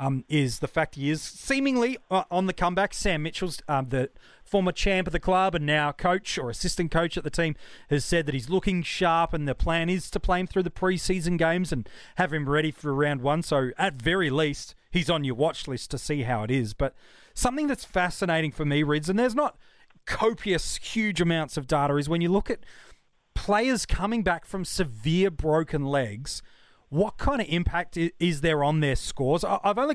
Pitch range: 140-185 Hz